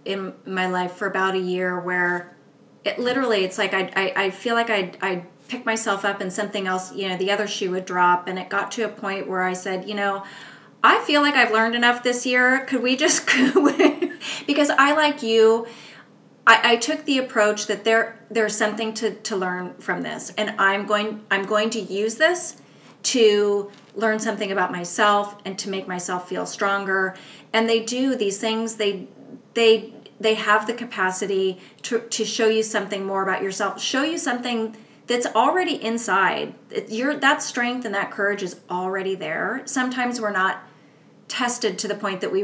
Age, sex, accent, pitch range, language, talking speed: 30-49, female, American, 195-240 Hz, English, 190 wpm